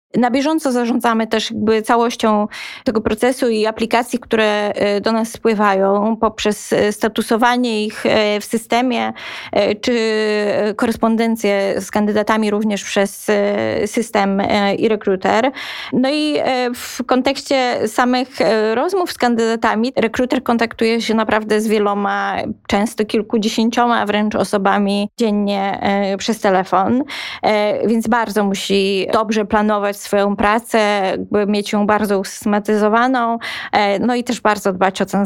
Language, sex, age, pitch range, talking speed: Polish, female, 20-39, 205-240 Hz, 115 wpm